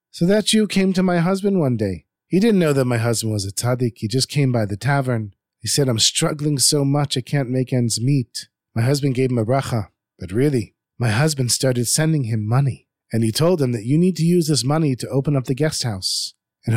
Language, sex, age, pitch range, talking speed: English, male, 40-59, 115-165 Hz, 240 wpm